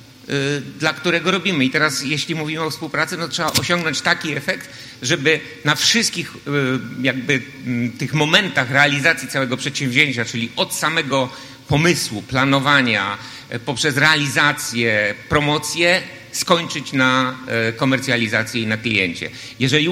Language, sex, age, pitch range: Polish, male, 50-69, 130-155 Hz